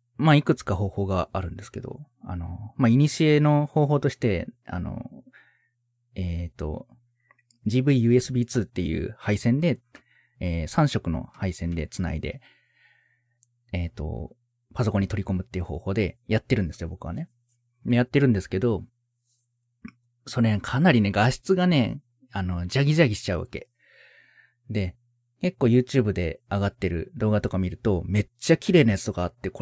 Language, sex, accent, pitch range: Japanese, male, native, 100-125 Hz